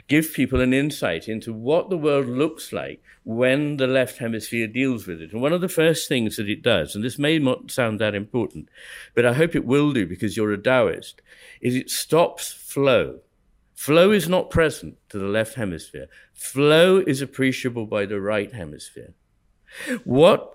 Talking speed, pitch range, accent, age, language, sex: 185 wpm, 115-150 Hz, British, 60-79, English, male